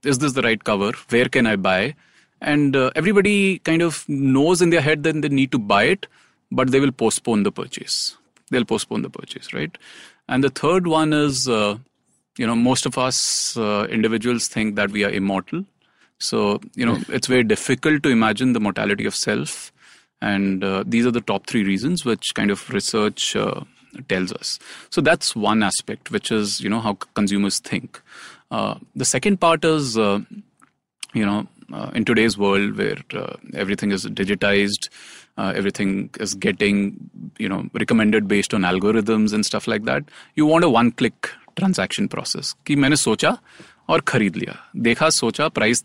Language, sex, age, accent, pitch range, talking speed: English, male, 30-49, Indian, 105-150 Hz, 180 wpm